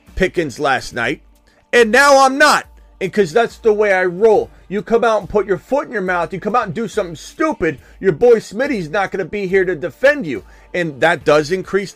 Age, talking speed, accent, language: 40-59, 230 wpm, American, English